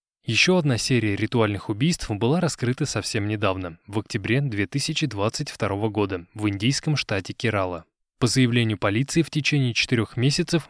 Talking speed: 135 wpm